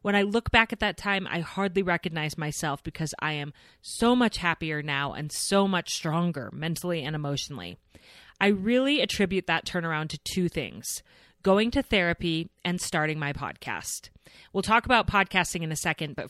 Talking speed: 175 wpm